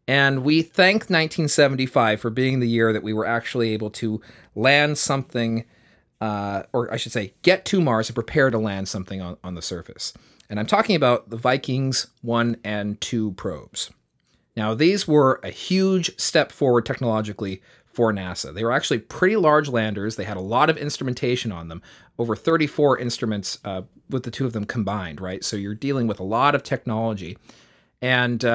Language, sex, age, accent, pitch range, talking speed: English, male, 30-49, American, 105-145 Hz, 185 wpm